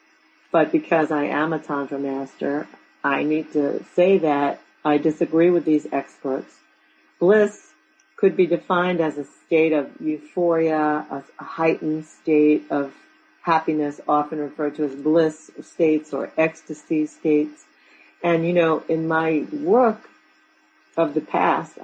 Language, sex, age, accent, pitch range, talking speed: English, female, 50-69, American, 145-170 Hz, 135 wpm